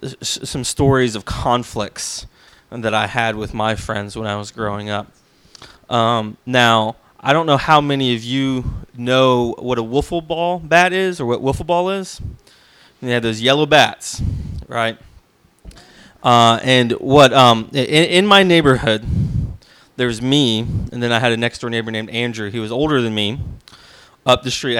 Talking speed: 170 wpm